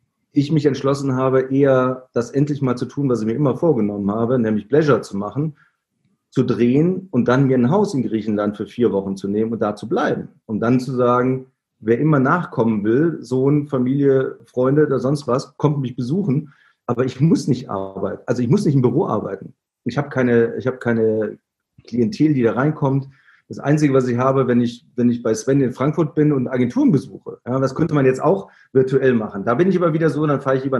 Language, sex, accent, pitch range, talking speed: German, male, German, 120-150 Hz, 220 wpm